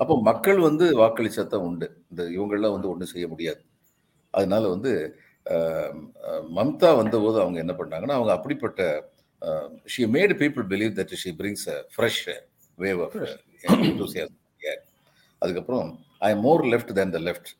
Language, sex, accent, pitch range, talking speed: Tamil, male, native, 95-125 Hz, 95 wpm